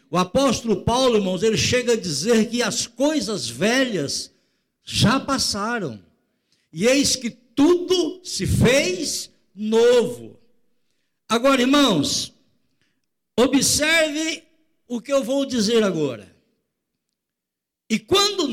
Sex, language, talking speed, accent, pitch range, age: male, Portuguese, 105 wpm, Brazilian, 205-285 Hz, 60-79